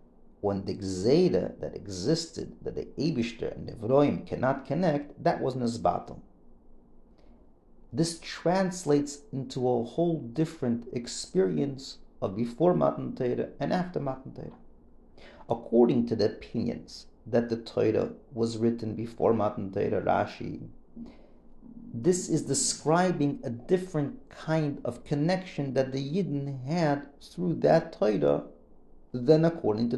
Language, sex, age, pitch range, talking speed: English, male, 50-69, 120-180 Hz, 125 wpm